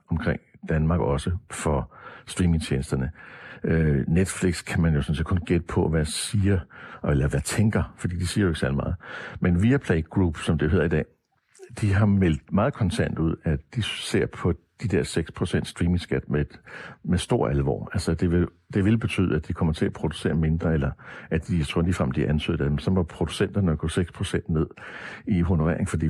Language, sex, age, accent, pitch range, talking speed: Danish, male, 60-79, native, 80-100 Hz, 200 wpm